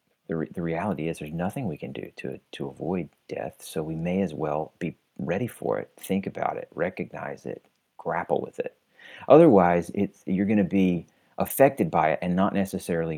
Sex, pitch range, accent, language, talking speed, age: male, 85-100 Hz, American, English, 195 wpm, 40-59